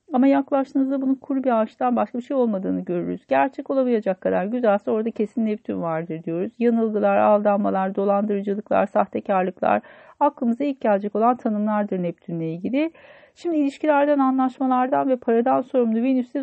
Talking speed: 140 wpm